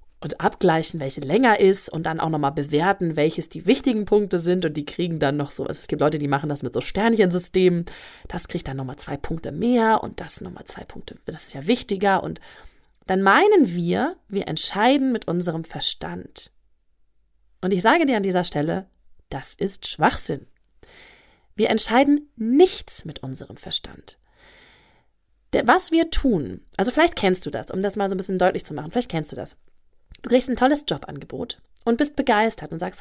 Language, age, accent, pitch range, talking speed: German, 20-39, German, 160-240 Hz, 185 wpm